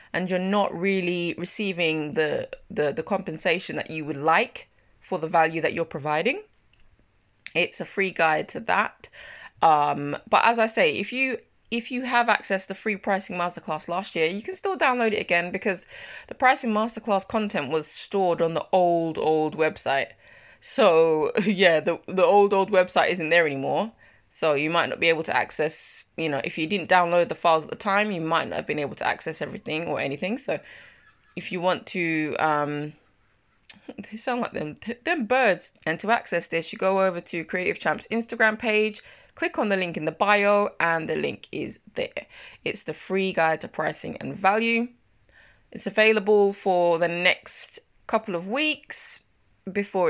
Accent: British